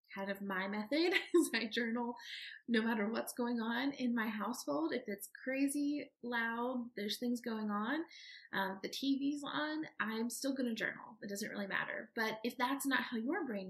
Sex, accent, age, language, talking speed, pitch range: female, American, 30-49, English, 190 wpm, 210-275 Hz